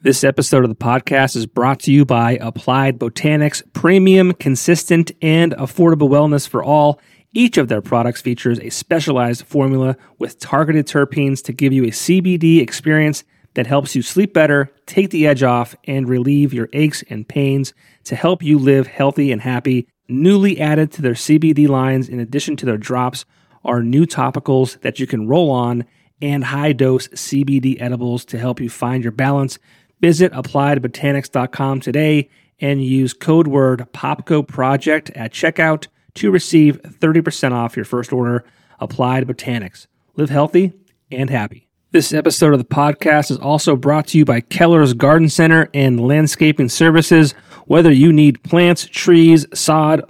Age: 30-49